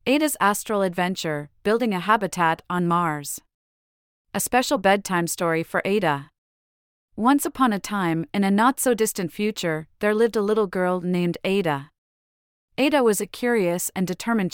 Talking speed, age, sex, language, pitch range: 145 wpm, 30-49, female, English, 165-215 Hz